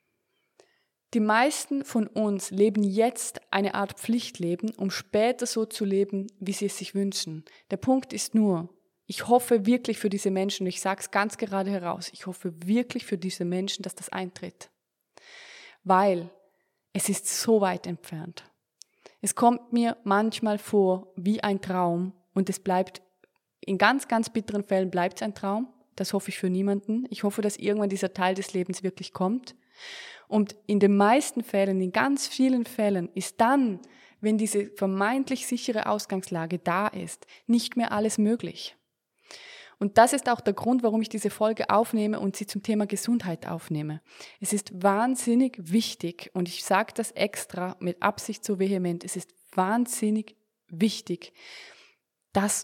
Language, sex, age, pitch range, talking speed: German, female, 20-39, 190-225 Hz, 160 wpm